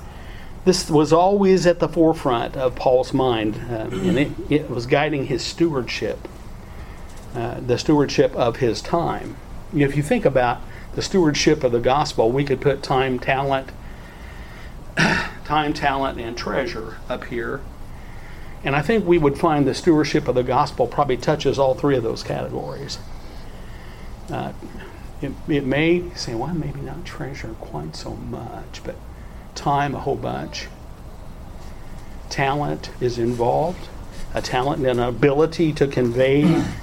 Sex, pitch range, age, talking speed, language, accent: male, 125-150 Hz, 50-69, 145 wpm, English, American